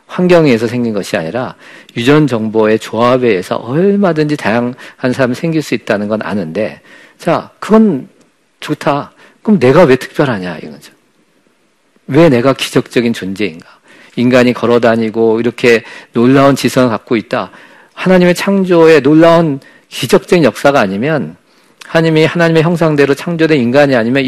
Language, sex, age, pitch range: Korean, male, 50-69, 115-160 Hz